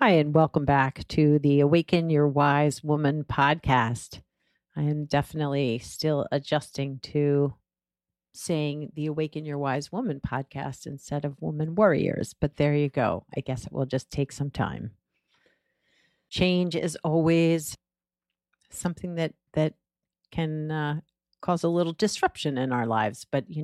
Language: English